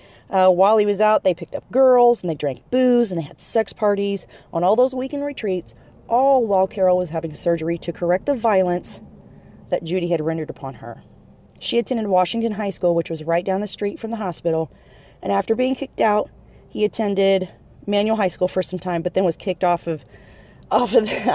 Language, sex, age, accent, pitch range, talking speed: English, female, 30-49, American, 170-210 Hz, 210 wpm